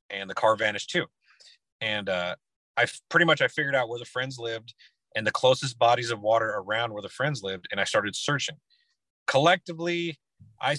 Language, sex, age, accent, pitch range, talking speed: English, male, 30-49, American, 110-140 Hz, 190 wpm